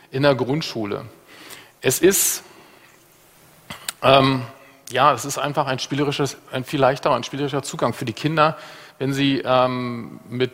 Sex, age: male, 40-59